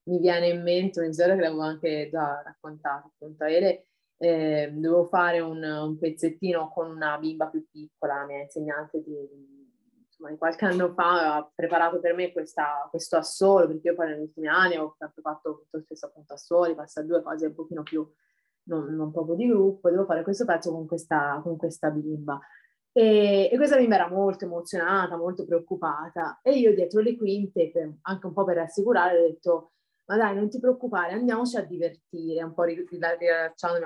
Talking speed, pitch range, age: 185 wpm, 160-190 Hz, 20-39